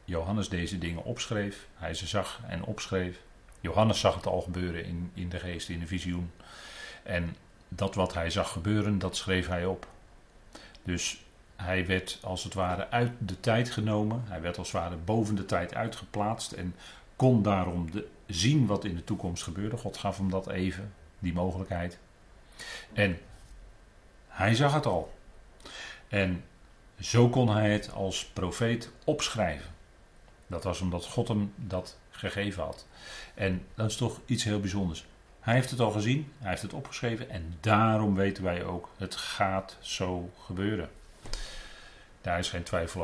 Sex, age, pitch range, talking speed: male, 40-59, 90-105 Hz, 160 wpm